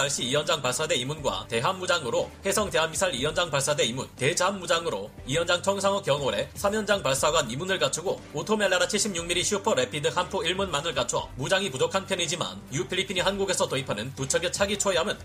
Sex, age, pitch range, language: male, 30-49, 155-200 Hz, Korean